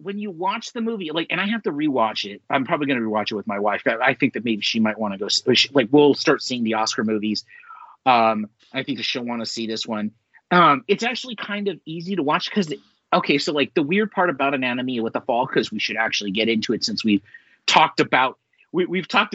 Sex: male